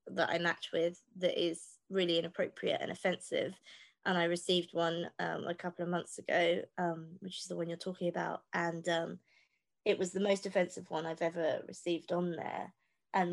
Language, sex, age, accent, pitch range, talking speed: English, female, 20-39, British, 175-190 Hz, 190 wpm